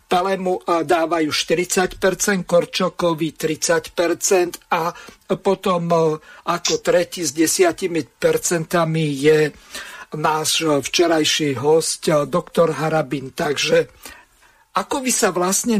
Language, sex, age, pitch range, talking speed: Slovak, male, 50-69, 160-190 Hz, 85 wpm